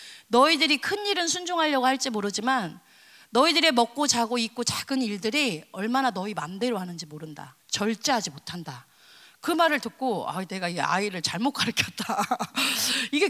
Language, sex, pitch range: Korean, female, 195-270 Hz